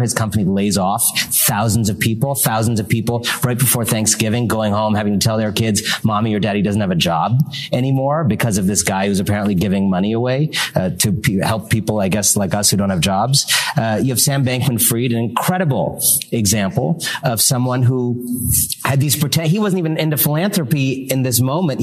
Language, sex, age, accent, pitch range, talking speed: English, male, 40-59, American, 115-155 Hz, 195 wpm